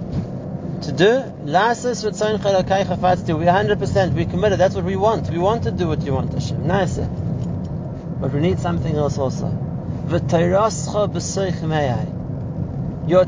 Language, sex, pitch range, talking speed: English, male, 150-190 Hz, 115 wpm